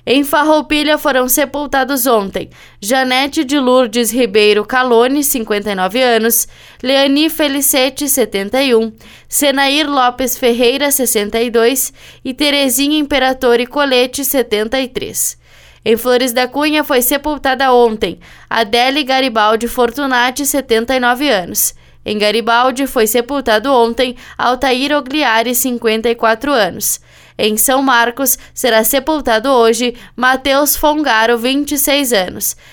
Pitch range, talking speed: 230-280 Hz, 100 wpm